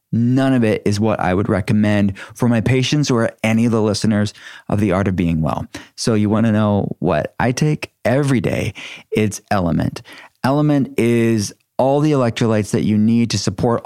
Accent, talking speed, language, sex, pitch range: American, 190 wpm, English, male, 110-130 Hz